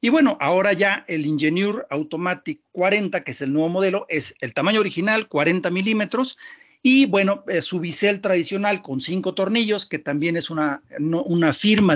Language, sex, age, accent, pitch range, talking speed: Spanish, male, 50-69, Mexican, 160-220 Hz, 170 wpm